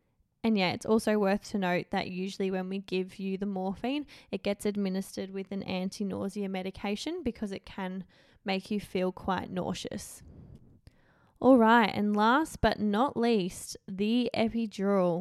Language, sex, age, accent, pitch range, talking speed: English, female, 10-29, Australian, 190-230 Hz, 155 wpm